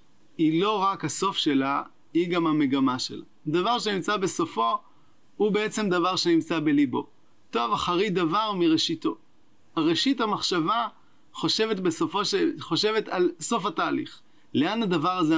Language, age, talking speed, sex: English, 30-49, 125 wpm, male